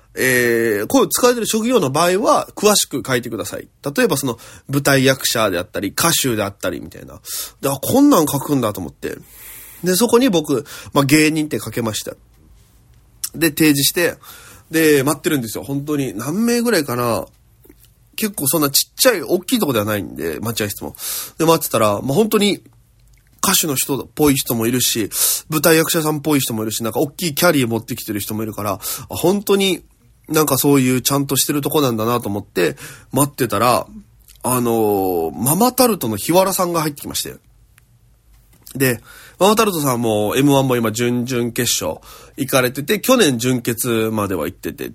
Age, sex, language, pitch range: 20-39, male, Japanese, 115-175 Hz